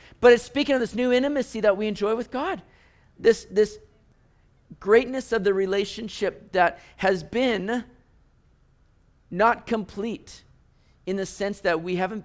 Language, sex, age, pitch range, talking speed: English, male, 50-69, 145-205 Hz, 140 wpm